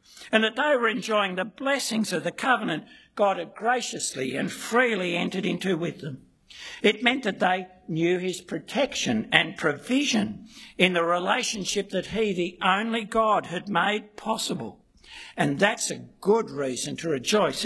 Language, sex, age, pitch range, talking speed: English, male, 60-79, 180-225 Hz, 155 wpm